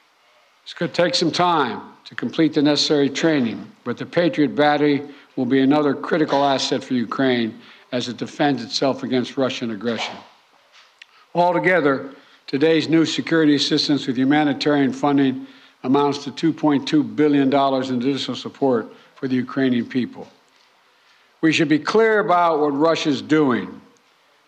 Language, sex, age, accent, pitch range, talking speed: English, male, 60-79, American, 135-170 Hz, 135 wpm